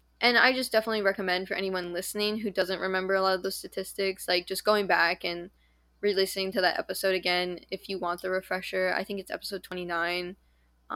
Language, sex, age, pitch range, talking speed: English, female, 10-29, 175-200 Hz, 195 wpm